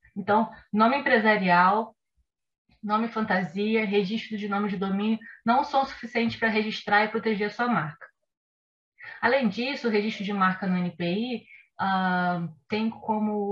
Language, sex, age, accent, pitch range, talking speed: Portuguese, female, 20-39, Brazilian, 195-235 Hz, 135 wpm